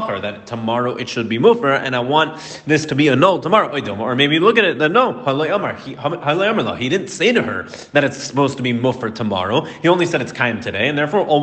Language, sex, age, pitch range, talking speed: English, male, 30-49, 120-155 Hz, 230 wpm